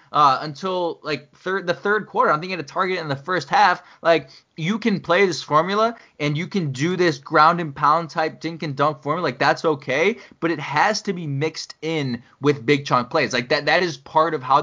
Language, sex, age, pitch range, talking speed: English, male, 20-39, 130-170 Hz, 225 wpm